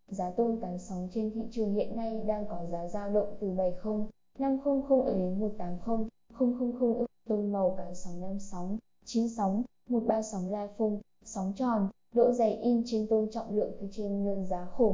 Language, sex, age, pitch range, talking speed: Vietnamese, female, 10-29, 205-235 Hz, 190 wpm